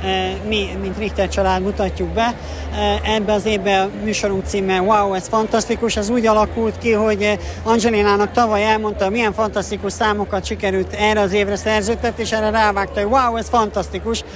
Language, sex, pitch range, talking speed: Hungarian, male, 200-230 Hz, 165 wpm